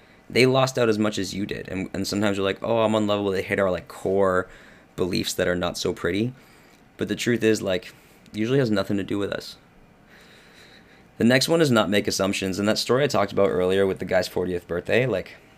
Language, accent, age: English, American, 20-39